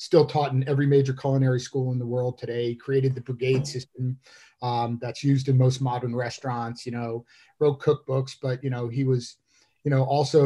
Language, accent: English, American